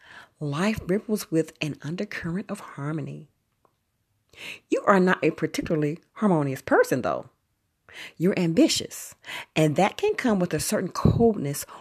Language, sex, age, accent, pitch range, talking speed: English, female, 40-59, American, 155-220 Hz, 125 wpm